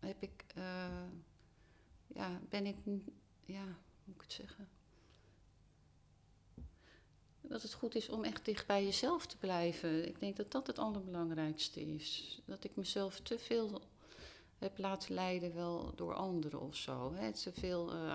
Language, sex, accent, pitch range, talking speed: Dutch, female, Dutch, 150-180 Hz, 155 wpm